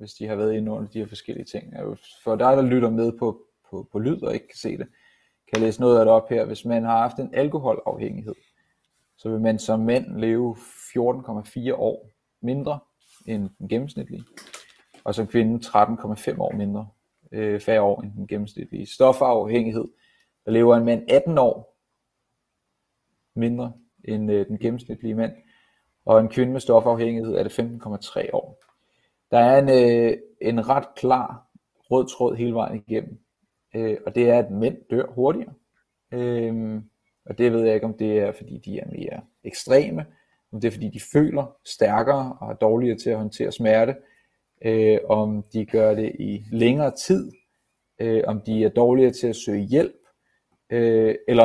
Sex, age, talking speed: male, 30-49, 165 wpm